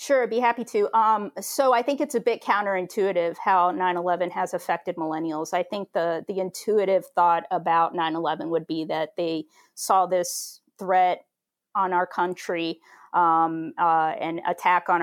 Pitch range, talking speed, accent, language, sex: 175-195 Hz, 165 wpm, American, English, female